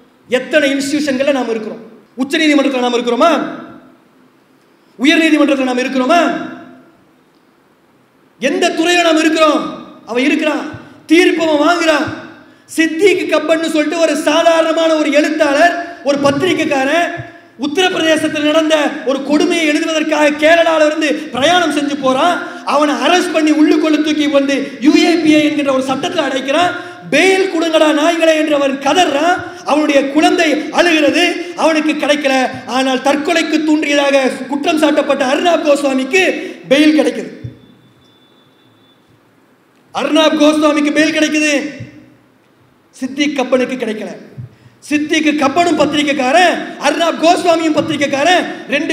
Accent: Indian